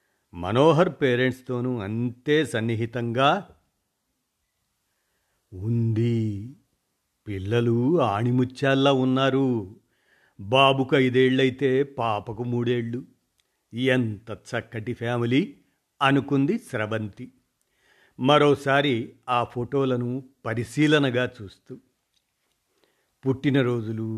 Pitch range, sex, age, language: 115-140 Hz, male, 50-69, Telugu